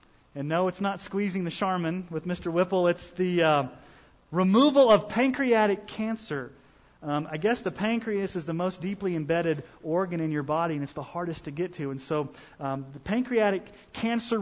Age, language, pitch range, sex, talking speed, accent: 30-49, English, 160-225 Hz, male, 185 wpm, American